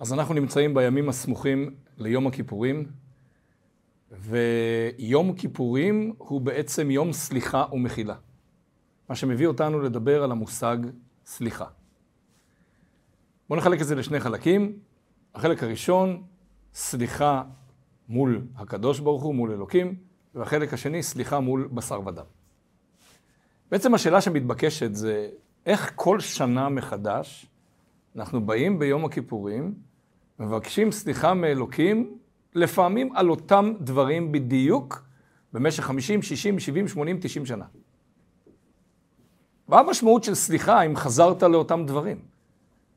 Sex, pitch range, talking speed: male, 125-165 Hz, 110 wpm